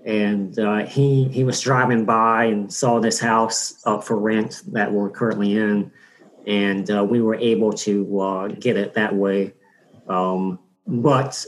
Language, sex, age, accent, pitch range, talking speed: English, male, 40-59, American, 100-120 Hz, 160 wpm